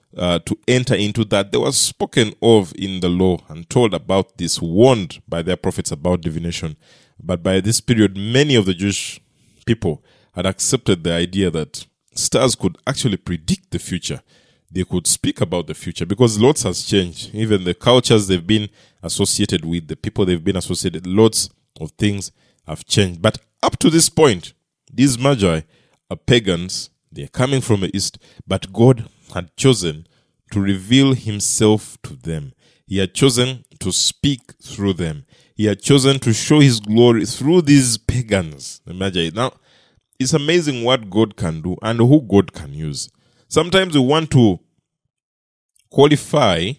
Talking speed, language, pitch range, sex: 165 wpm, English, 95-130 Hz, male